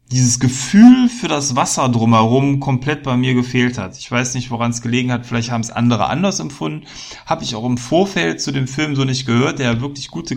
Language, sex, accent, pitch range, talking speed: German, male, German, 115-135 Hz, 220 wpm